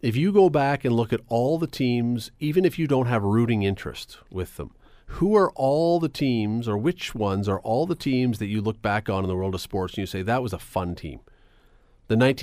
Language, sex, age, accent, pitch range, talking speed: English, male, 40-59, American, 105-130 Hz, 240 wpm